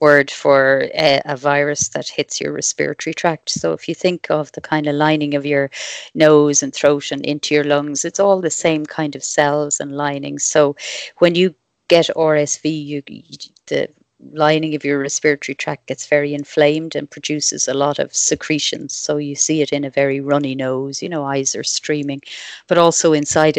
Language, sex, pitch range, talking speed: English, female, 145-155 Hz, 195 wpm